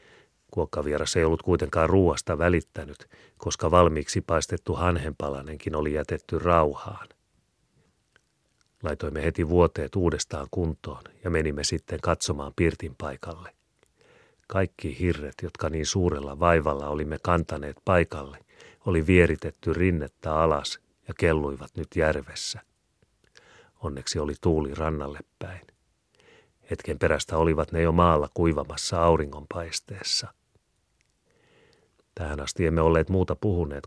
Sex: male